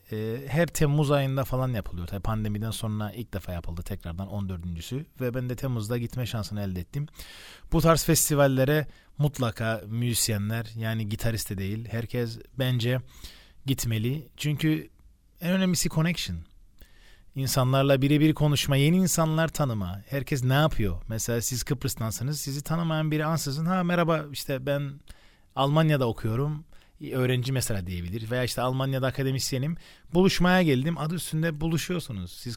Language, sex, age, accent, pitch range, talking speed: Turkish, male, 40-59, native, 115-150 Hz, 135 wpm